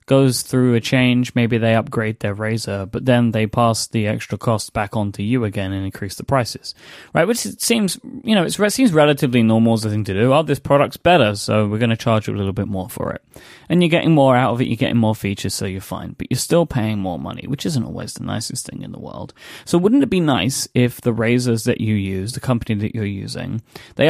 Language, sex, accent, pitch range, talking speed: English, male, British, 110-140 Hz, 255 wpm